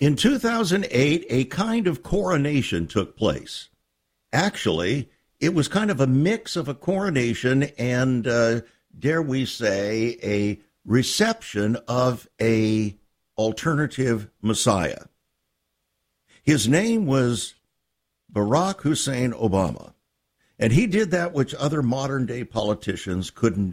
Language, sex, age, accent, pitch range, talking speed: English, male, 60-79, American, 110-160 Hz, 110 wpm